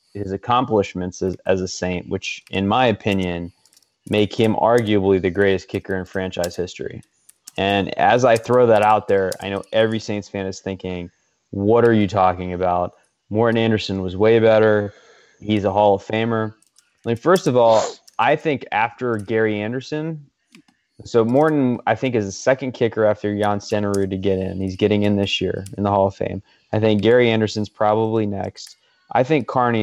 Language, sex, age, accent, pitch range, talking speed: English, male, 20-39, American, 95-115 Hz, 185 wpm